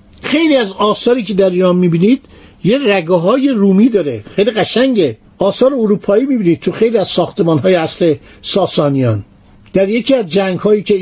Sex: male